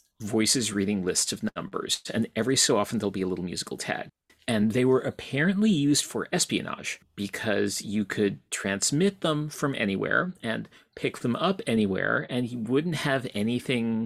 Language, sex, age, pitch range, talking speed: English, male, 40-59, 105-130 Hz, 165 wpm